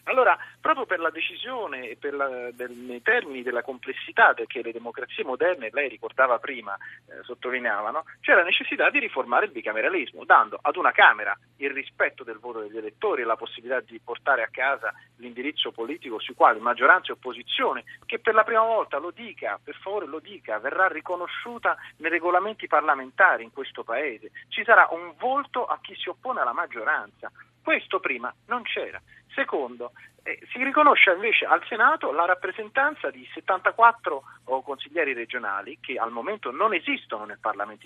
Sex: male